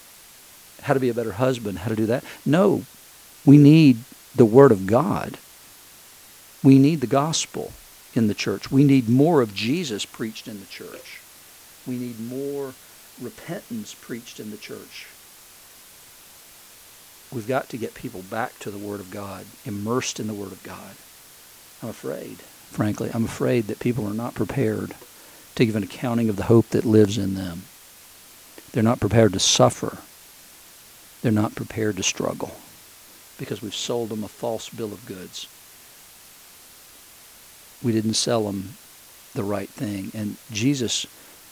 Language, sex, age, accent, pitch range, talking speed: English, male, 50-69, American, 105-125 Hz, 155 wpm